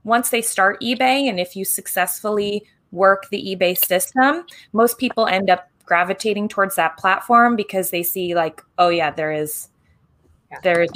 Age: 20-39